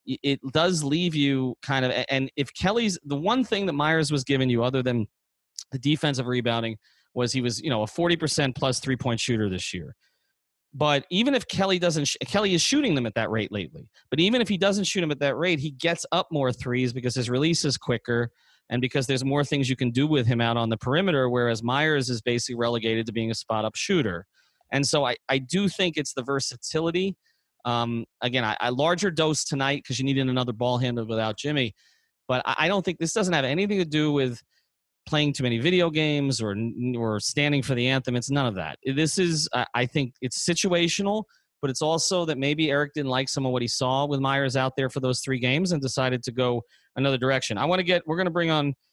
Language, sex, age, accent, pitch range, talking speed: English, male, 30-49, American, 125-155 Hz, 225 wpm